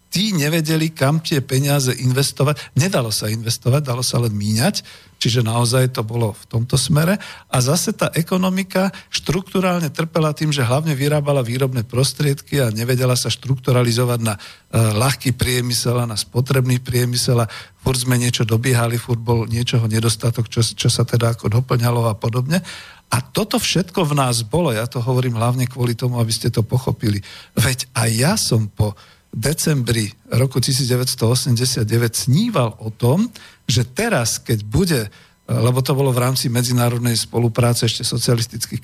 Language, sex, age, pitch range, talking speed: Slovak, male, 50-69, 115-140 Hz, 155 wpm